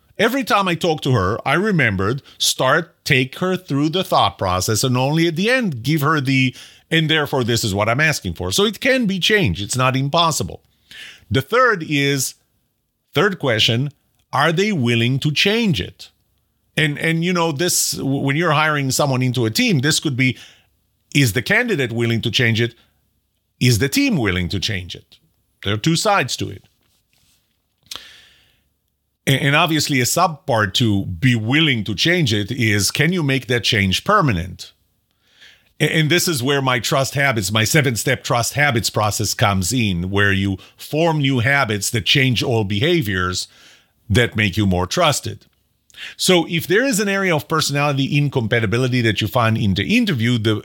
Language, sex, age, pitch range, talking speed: English, male, 40-59, 110-155 Hz, 175 wpm